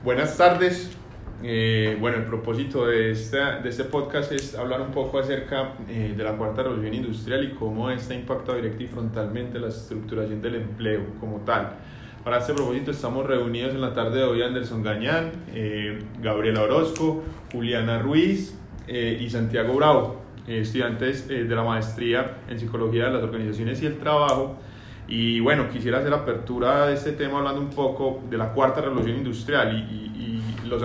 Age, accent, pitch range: 20-39, Colombian, 115-135 Hz